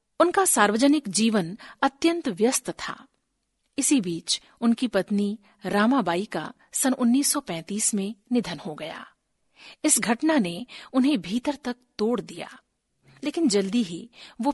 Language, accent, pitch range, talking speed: Hindi, native, 210-275 Hz, 125 wpm